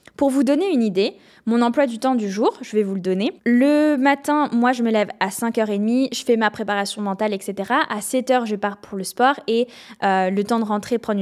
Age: 10-29